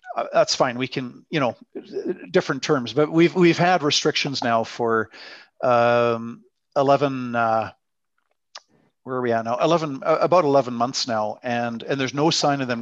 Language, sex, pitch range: English, male, 120-145 Hz